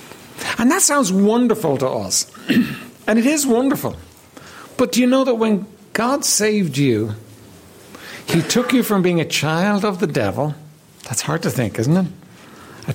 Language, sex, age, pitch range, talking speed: English, male, 60-79, 130-210 Hz, 165 wpm